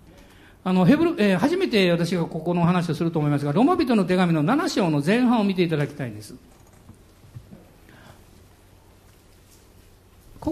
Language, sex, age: Japanese, male, 60-79